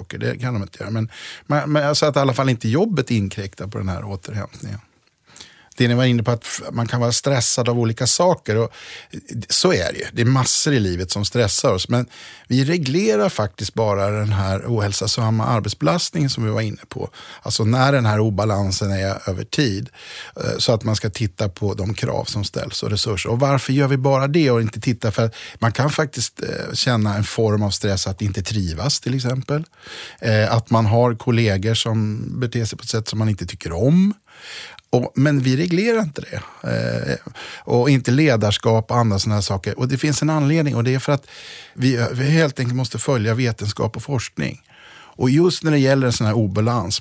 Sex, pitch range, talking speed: male, 105-135 Hz, 205 wpm